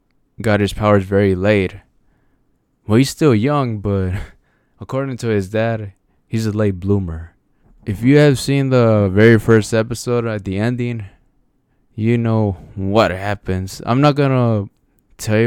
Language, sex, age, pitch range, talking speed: English, male, 20-39, 95-115 Hz, 145 wpm